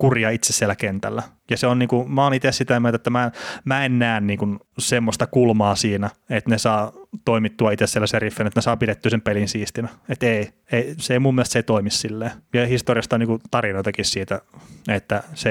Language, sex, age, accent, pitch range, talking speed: Finnish, male, 20-39, native, 110-125 Hz, 210 wpm